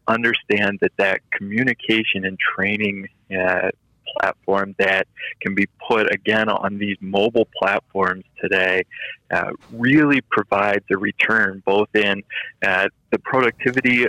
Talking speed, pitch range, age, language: 120 wpm, 100-110 Hz, 20-39, English